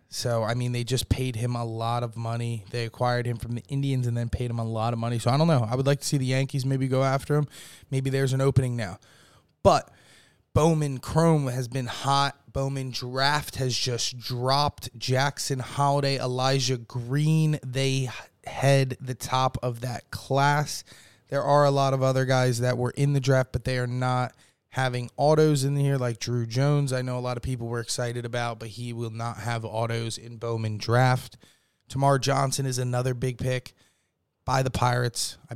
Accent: American